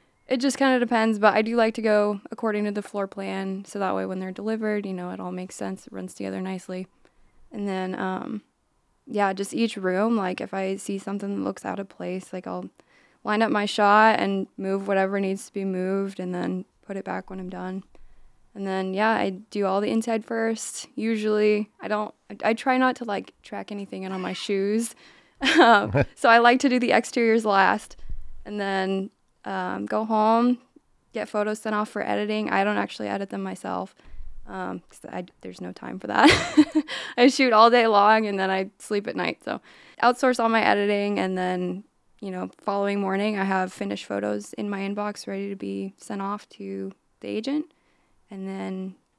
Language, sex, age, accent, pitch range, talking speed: English, female, 20-39, American, 185-220 Hz, 200 wpm